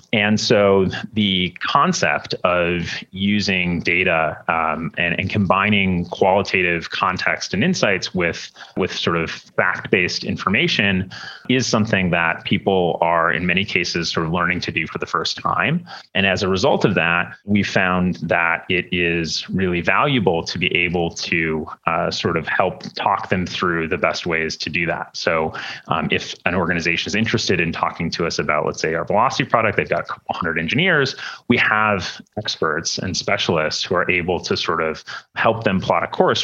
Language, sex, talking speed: English, male, 175 wpm